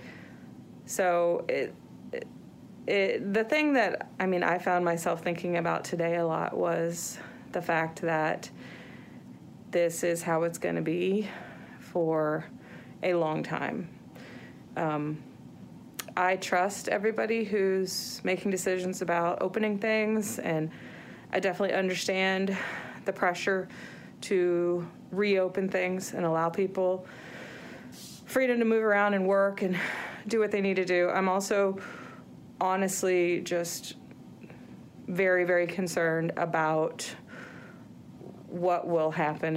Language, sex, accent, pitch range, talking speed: English, female, American, 175-210 Hz, 120 wpm